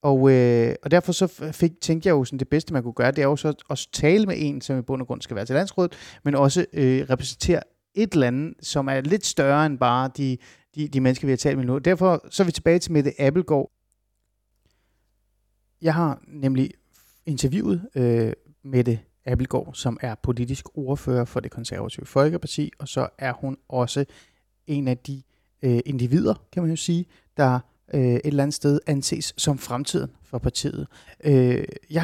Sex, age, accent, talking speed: male, 30-49, native, 195 wpm